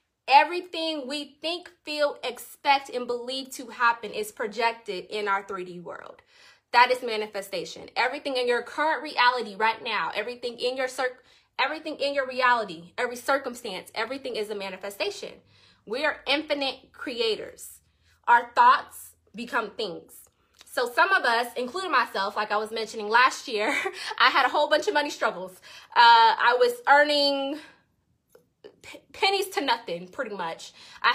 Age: 20-39